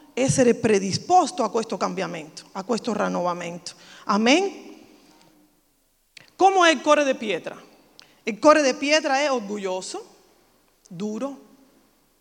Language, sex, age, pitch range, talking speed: Italian, female, 40-59, 200-290 Hz, 110 wpm